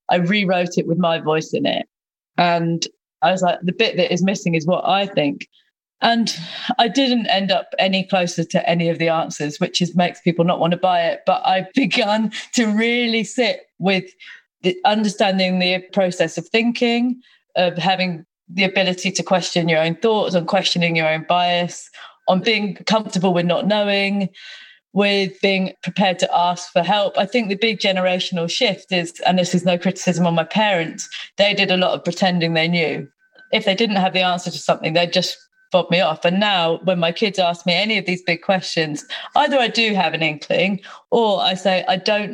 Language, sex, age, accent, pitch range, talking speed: English, female, 30-49, British, 175-205 Hz, 200 wpm